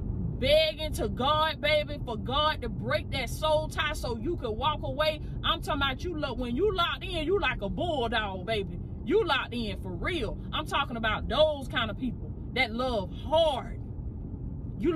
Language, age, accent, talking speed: English, 20-39, American, 185 wpm